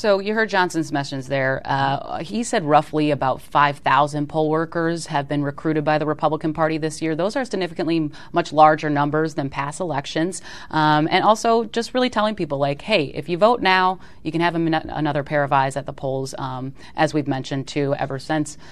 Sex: female